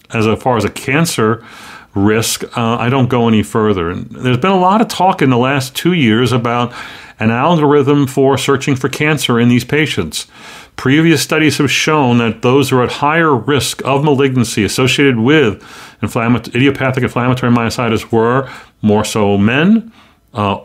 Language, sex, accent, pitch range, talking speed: English, male, American, 115-145 Hz, 170 wpm